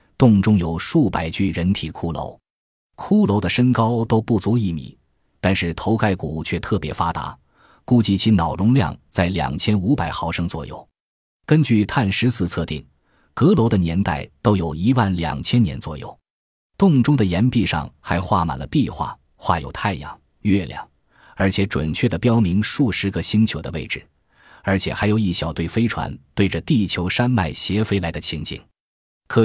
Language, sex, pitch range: Chinese, male, 85-110 Hz